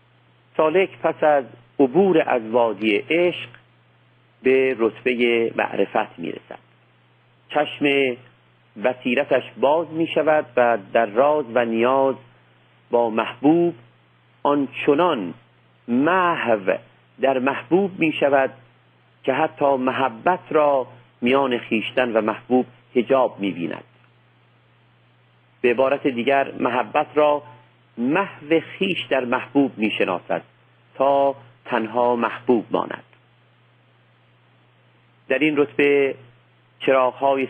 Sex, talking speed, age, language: male, 90 wpm, 50-69, Persian